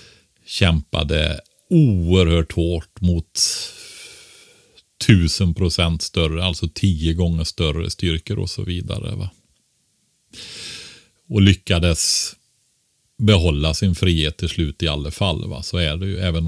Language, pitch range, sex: Swedish, 90-135 Hz, male